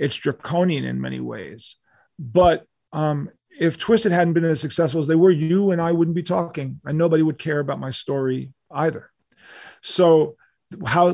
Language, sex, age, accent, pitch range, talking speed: English, male, 40-59, American, 130-160 Hz, 170 wpm